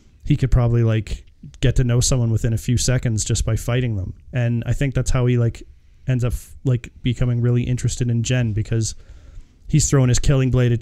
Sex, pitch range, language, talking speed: male, 115-140 Hz, English, 210 wpm